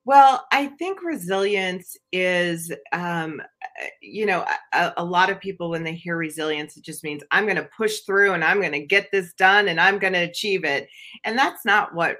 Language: English